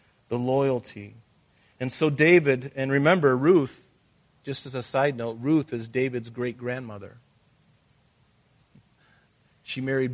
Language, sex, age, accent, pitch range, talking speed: English, male, 40-59, American, 115-140 Hz, 110 wpm